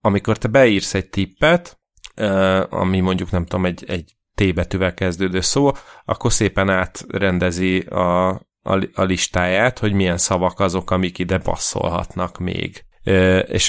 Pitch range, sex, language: 95-105 Hz, male, Hungarian